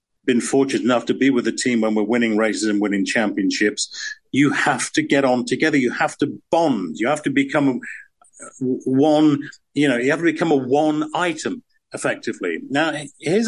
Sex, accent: male, British